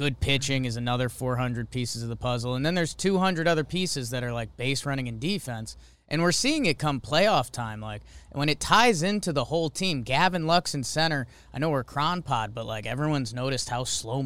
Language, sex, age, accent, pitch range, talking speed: English, male, 20-39, American, 115-155 Hz, 220 wpm